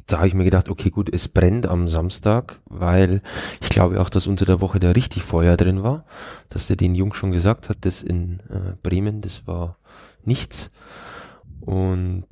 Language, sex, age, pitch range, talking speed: German, male, 20-39, 90-105 Hz, 190 wpm